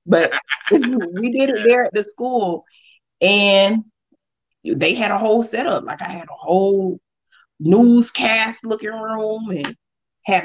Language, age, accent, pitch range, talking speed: English, 30-49, American, 165-220 Hz, 140 wpm